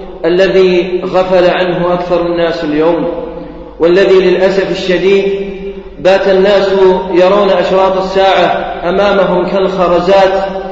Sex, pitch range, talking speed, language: male, 190-215 Hz, 90 wpm, English